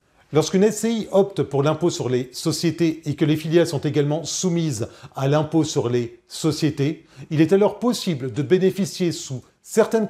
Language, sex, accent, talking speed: French, male, French, 165 wpm